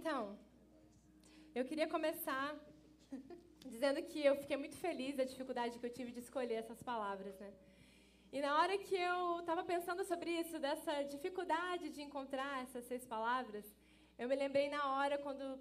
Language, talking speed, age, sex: Portuguese, 165 wpm, 10-29, female